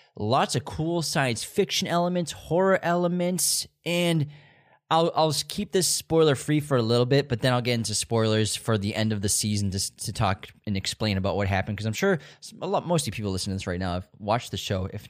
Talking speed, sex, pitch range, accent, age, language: 235 wpm, male, 105-140 Hz, American, 20-39, English